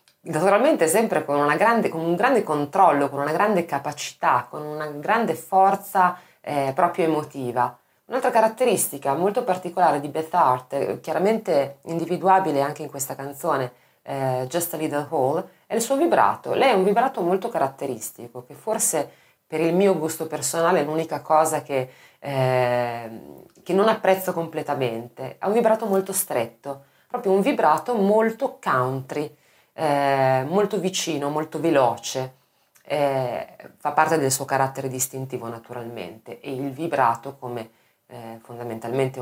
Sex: female